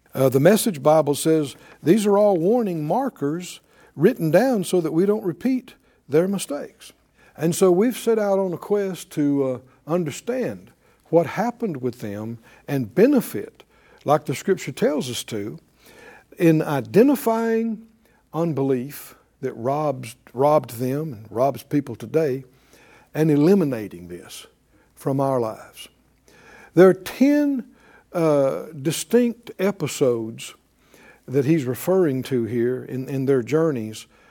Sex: male